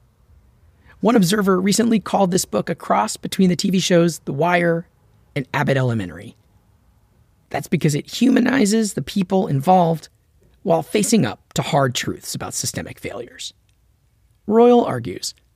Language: English